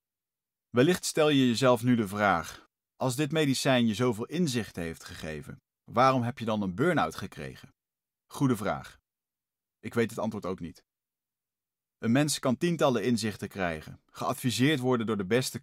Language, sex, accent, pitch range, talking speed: Dutch, male, Dutch, 105-130 Hz, 155 wpm